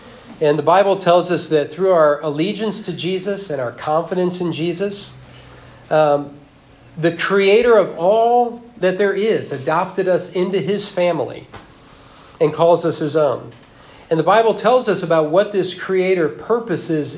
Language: English